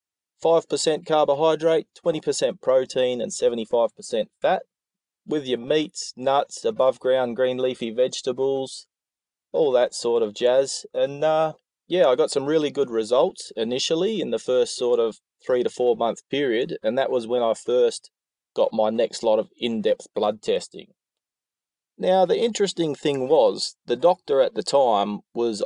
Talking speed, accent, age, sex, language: 150 wpm, Australian, 20-39, male, English